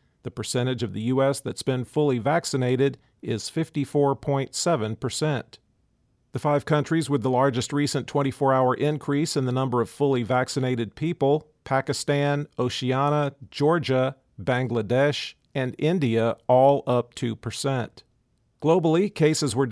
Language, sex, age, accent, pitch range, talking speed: English, male, 50-69, American, 120-140 Hz, 125 wpm